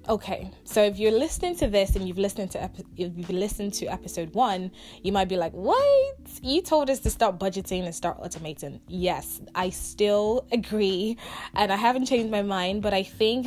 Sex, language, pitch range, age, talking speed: female, English, 170-205 Hz, 20-39, 195 wpm